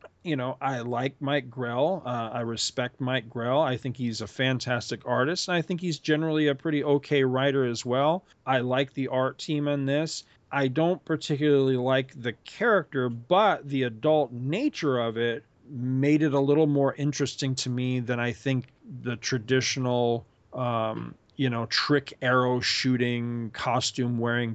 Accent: American